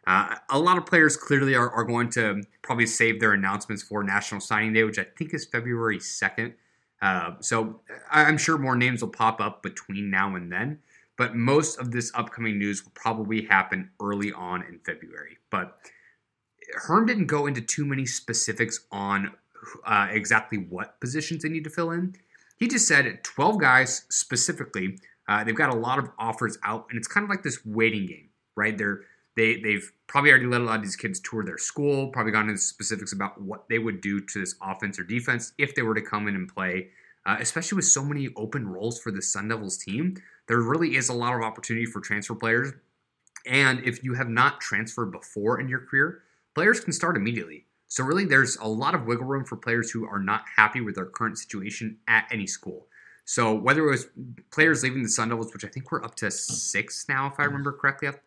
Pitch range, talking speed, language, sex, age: 105-140 Hz, 215 wpm, English, male, 20-39